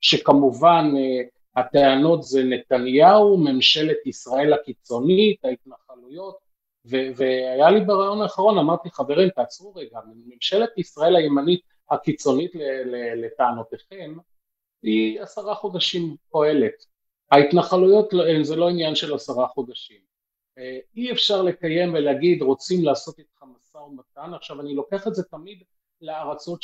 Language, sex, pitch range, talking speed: Hebrew, male, 135-185 Hz, 115 wpm